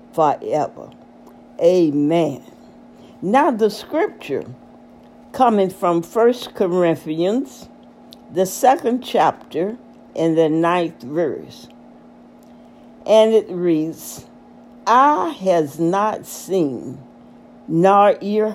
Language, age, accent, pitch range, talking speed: English, 60-79, American, 155-210 Hz, 80 wpm